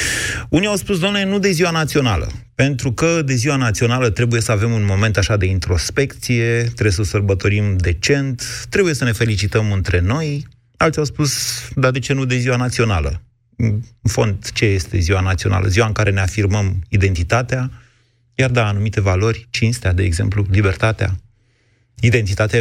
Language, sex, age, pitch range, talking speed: Romanian, male, 30-49, 100-125 Hz, 165 wpm